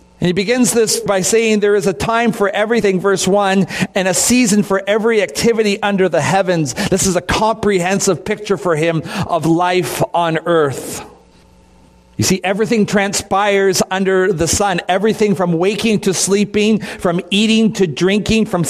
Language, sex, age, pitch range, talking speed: English, male, 50-69, 175-215 Hz, 165 wpm